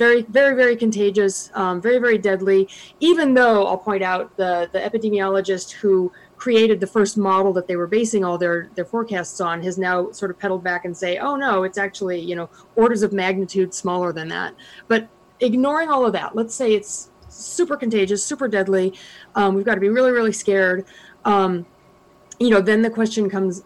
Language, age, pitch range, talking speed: English, 30-49, 190-235 Hz, 195 wpm